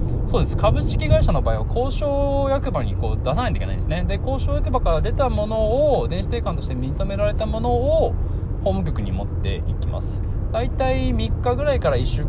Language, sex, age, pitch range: Japanese, male, 20-39, 85-110 Hz